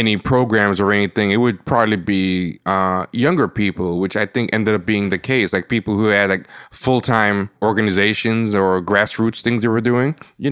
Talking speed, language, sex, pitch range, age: 195 wpm, English, male, 95-115 Hz, 20-39